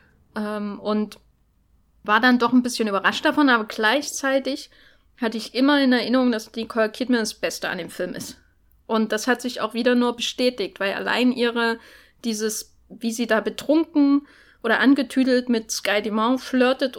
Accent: German